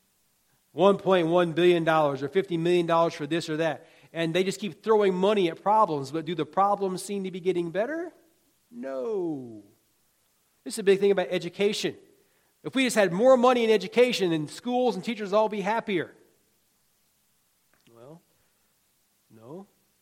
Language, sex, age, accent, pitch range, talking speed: English, male, 40-59, American, 140-200 Hz, 155 wpm